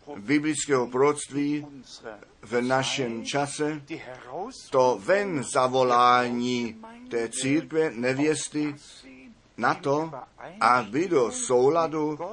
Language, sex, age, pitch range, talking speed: Czech, male, 50-69, 125-160 Hz, 80 wpm